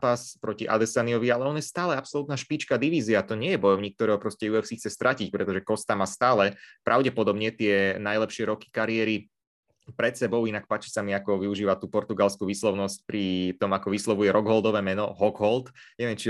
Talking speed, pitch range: 175 wpm, 105-120 Hz